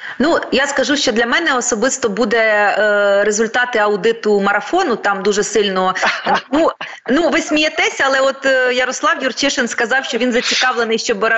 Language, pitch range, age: Ukrainian, 200-245 Hz, 20-39